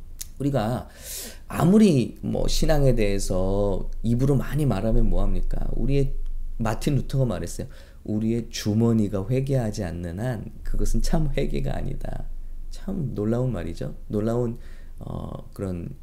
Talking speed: 100 wpm